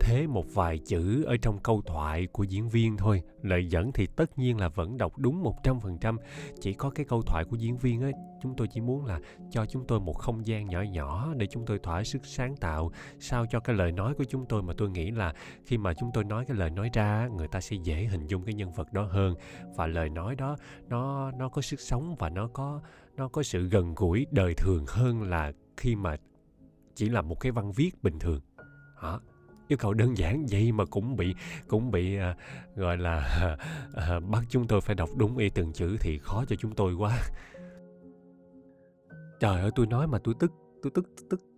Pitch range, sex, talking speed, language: 95-135 Hz, male, 225 wpm, Vietnamese